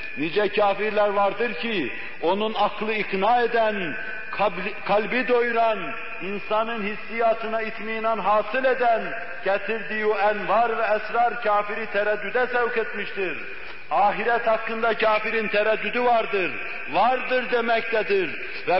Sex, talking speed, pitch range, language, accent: male, 105 wpm, 200-225 Hz, Turkish, native